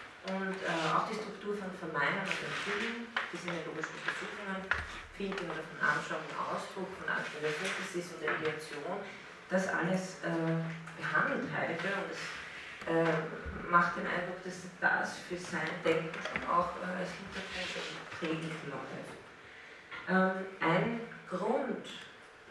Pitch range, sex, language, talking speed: 160-190 Hz, female, German, 135 wpm